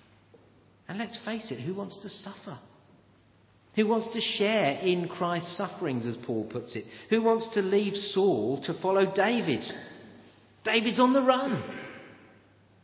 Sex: male